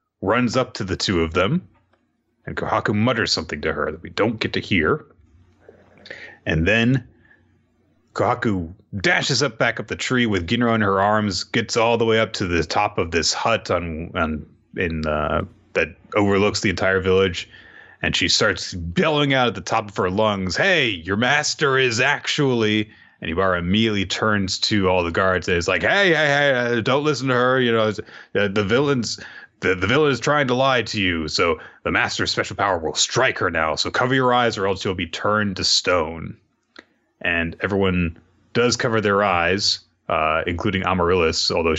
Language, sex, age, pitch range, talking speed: English, male, 30-49, 85-120 Hz, 185 wpm